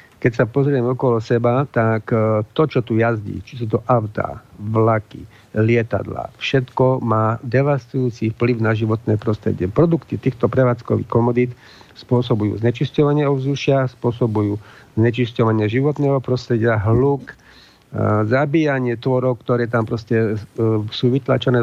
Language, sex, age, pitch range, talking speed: Slovak, male, 50-69, 110-130 Hz, 115 wpm